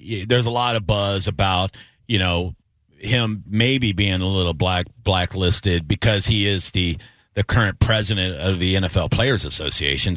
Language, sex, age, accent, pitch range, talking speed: English, male, 40-59, American, 100-125 Hz, 160 wpm